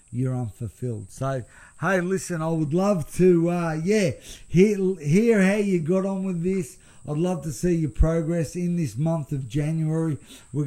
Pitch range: 135-175 Hz